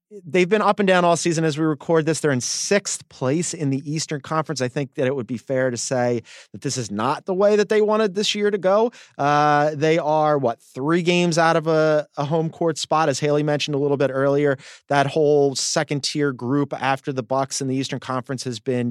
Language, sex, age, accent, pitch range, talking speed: English, male, 30-49, American, 130-160 Hz, 240 wpm